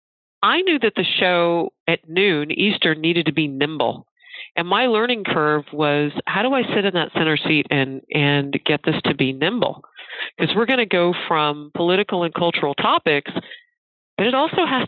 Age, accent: 40-59, American